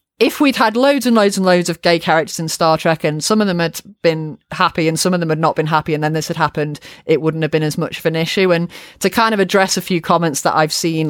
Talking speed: 290 wpm